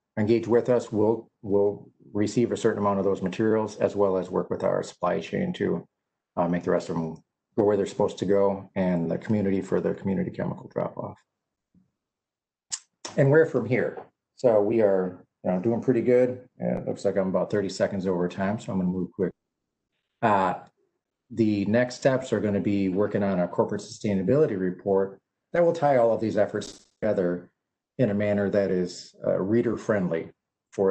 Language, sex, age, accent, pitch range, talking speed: English, male, 40-59, American, 95-115 Hz, 200 wpm